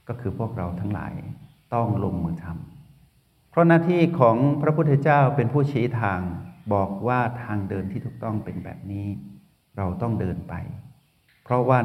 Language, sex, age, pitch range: Thai, male, 60-79, 100-130 Hz